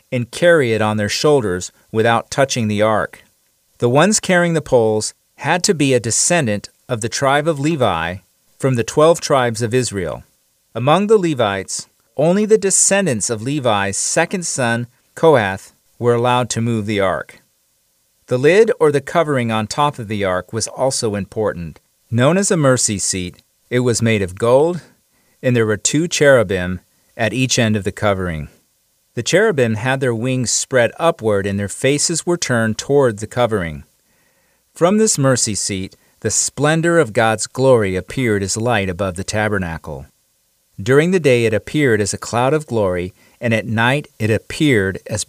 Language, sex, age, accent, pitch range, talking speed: English, male, 40-59, American, 105-145 Hz, 170 wpm